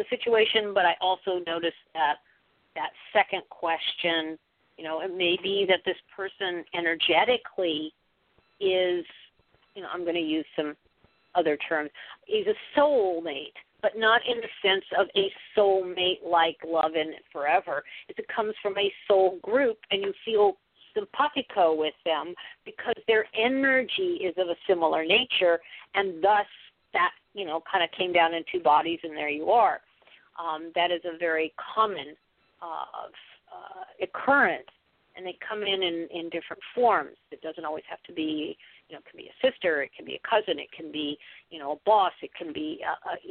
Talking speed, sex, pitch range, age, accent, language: 175 wpm, female, 165-230 Hz, 50-69, American, English